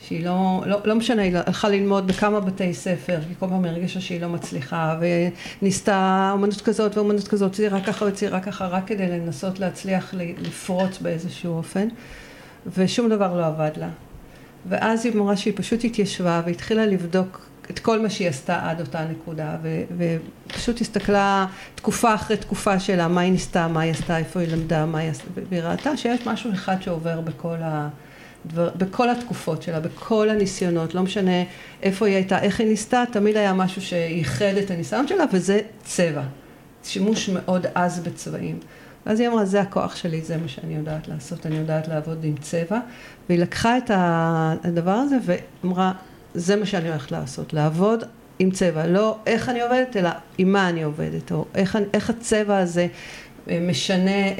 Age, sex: 50-69, female